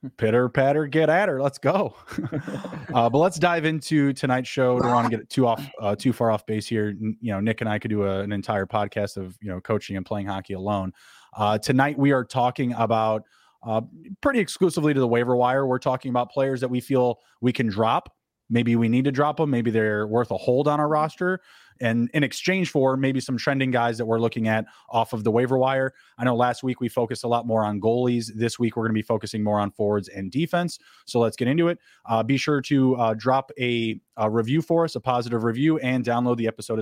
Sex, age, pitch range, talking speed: male, 20-39, 115-140 Hz, 240 wpm